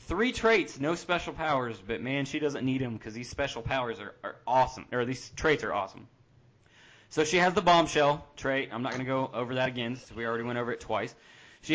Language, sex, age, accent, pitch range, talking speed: English, male, 30-49, American, 120-165 Hz, 230 wpm